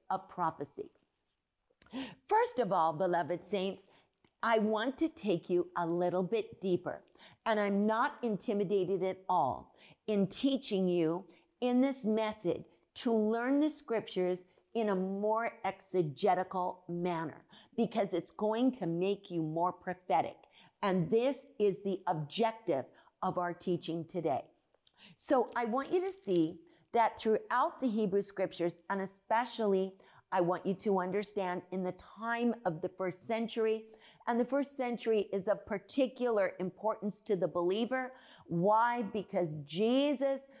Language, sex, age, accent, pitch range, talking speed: English, female, 50-69, American, 185-235 Hz, 135 wpm